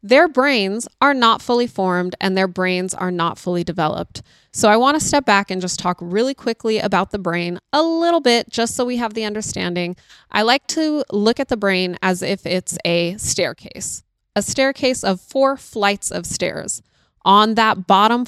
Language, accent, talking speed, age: English, American, 190 wpm, 20-39